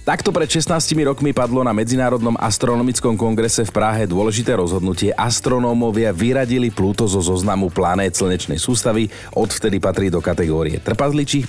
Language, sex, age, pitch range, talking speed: Slovak, male, 40-59, 95-120 Hz, 135 wpm